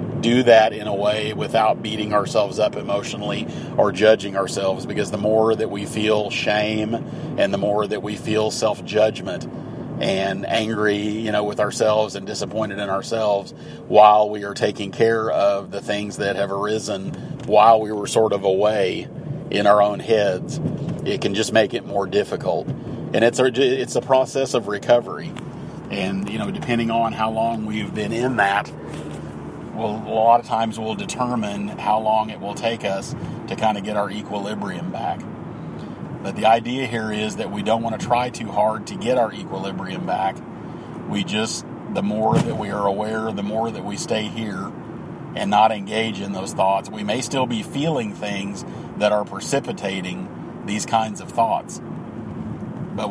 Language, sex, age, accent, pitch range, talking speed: English, male, 40-59, American, 105-115 Hz, 175 wpm